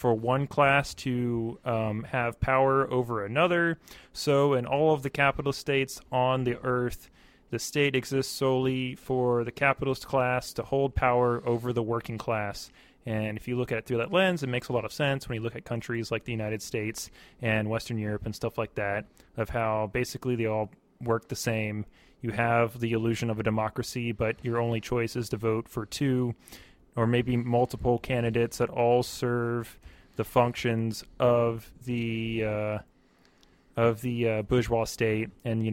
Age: 30-49